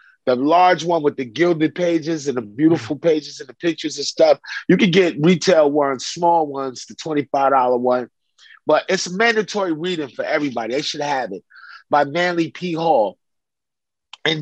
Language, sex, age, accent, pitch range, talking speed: English, male, 30-49, American, 145-190 Hz, 170 wpm